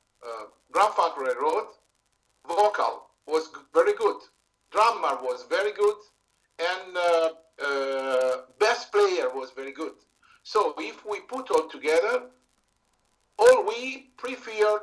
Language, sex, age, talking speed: English, male, 50-69, 120 wpm